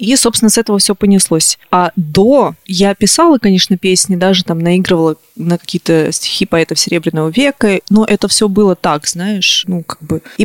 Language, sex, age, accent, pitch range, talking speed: Russian, female, 20-39, native, 175-220 Hz, 180 wpm